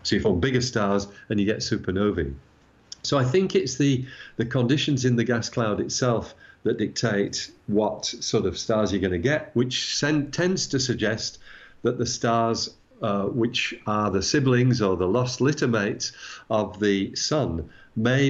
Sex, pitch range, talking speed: male, 110-135 Hz, 170 wpm